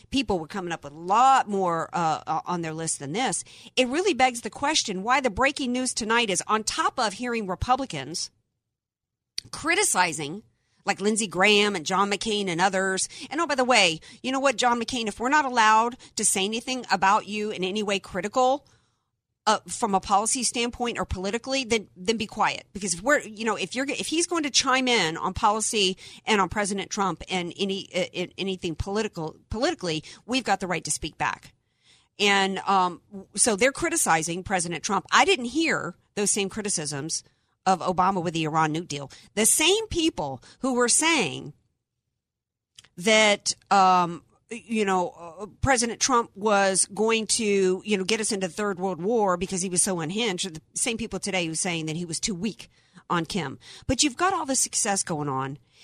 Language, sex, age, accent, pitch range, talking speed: English, female, 50-69, American, 180-240 Hz, 190 wpm